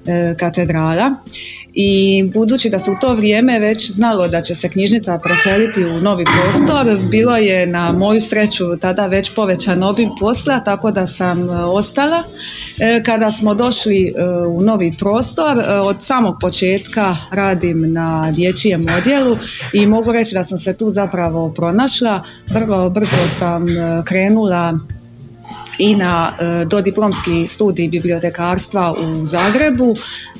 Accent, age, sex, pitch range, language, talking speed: native, 30-49, female, 180-220 Hz, Croatian, 135 wpm